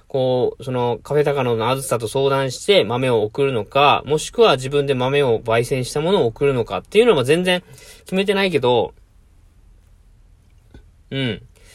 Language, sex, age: Japanese, male, 20-39